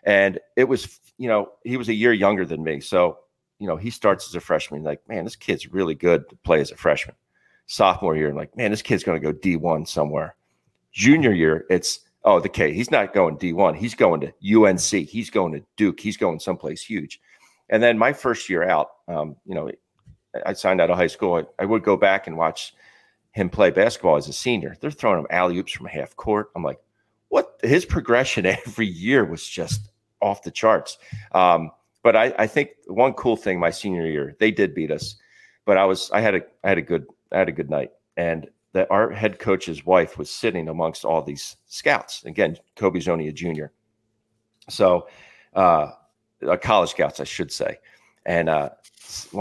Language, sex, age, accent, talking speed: English, male, 40-59, American, 205 wpm